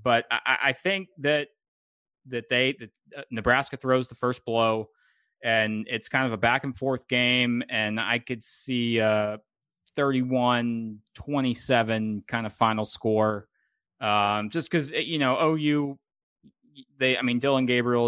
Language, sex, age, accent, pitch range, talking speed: English, male, 30-49, American, 110-135 Hz, 140 wpm